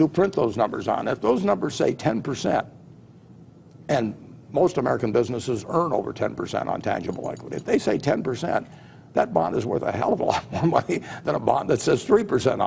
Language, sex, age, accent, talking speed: English, male, 60-79, American, 190 wpm